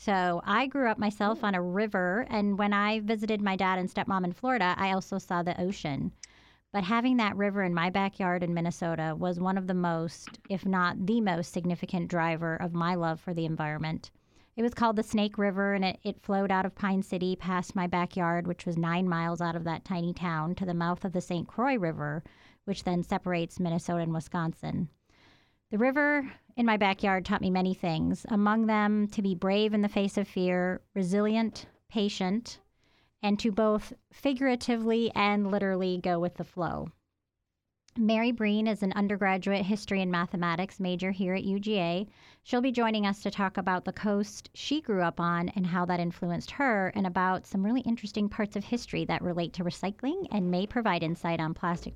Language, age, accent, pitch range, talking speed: English, 30-49, American, 175-210 Hz, 195 wpm